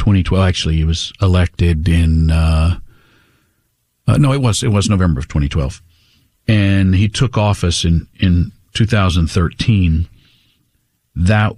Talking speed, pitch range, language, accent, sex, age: 145 wpm, 90-115 Hz, English, American, male, 50-69